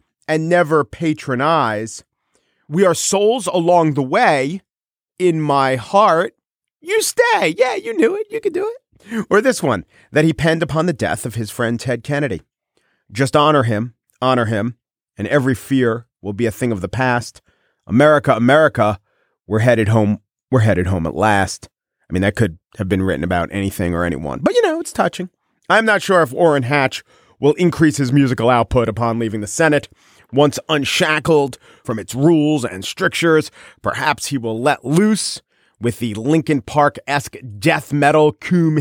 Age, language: 40-59, English